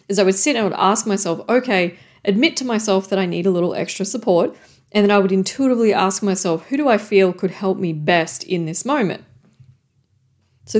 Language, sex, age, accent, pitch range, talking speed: English, female, 40-59, Australian, 180-220 Hz, 215 wpm